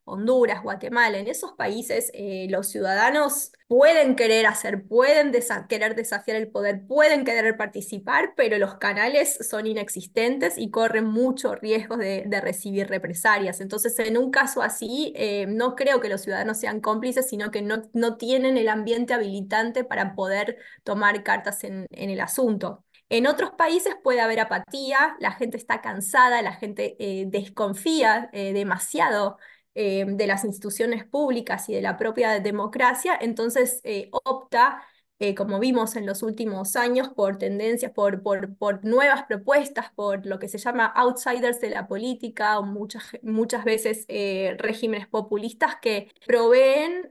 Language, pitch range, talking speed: Spanish, 200-250 Hz, 155 wpm